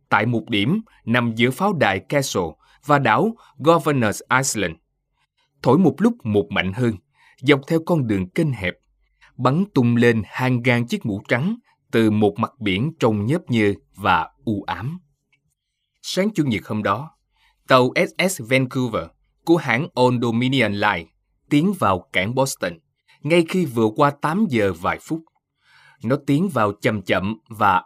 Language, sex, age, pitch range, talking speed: Vietnamese, male, 20-39, 110-150 Hz, 155 wpm